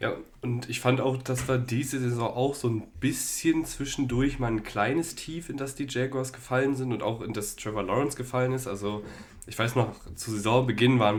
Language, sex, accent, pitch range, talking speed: German, male, German, 105-120 Hz, 210 wpm